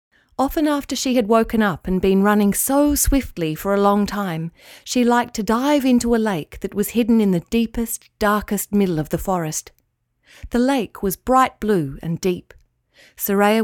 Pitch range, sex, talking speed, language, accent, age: 185-245 Hz, female, 180 wpm, English, Australian, 40-59